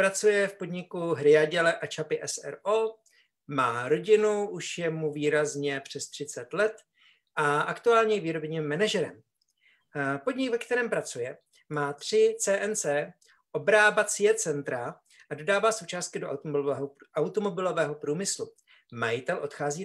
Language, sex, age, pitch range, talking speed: Slovak, male, 50-69, 145-215 Hz, 115 wpm